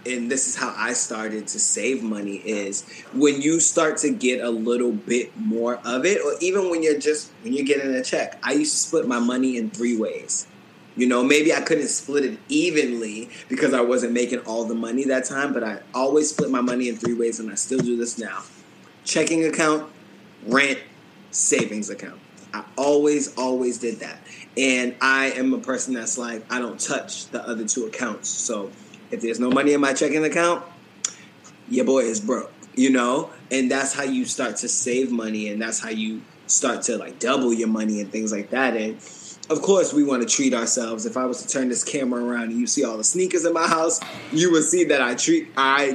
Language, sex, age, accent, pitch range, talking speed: English, male, 20-39, American, 120-150 Hz, 215 wpm